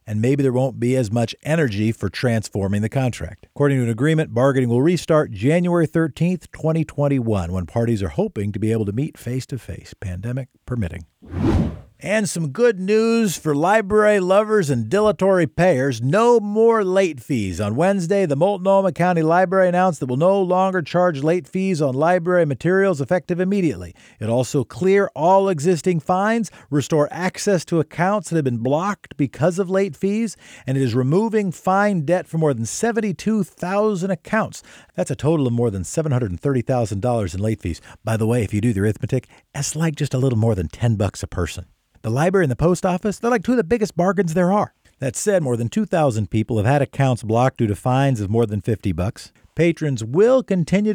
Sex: male